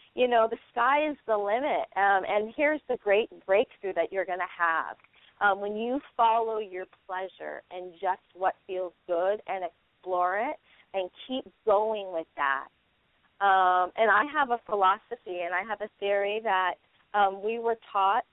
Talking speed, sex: 170 wpm, female